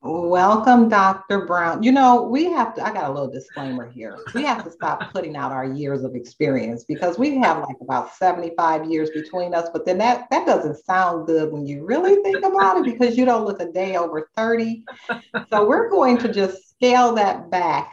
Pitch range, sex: 150-215 Hz, female